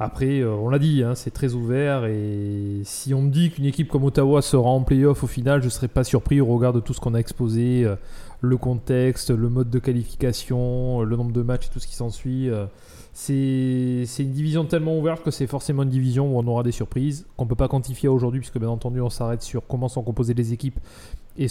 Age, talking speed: 20-39, 235 wpm